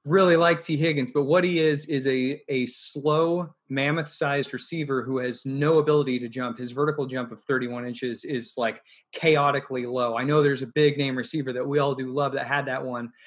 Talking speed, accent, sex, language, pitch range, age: 215 wpm, American, male, English, 130-150 Hz, 20-39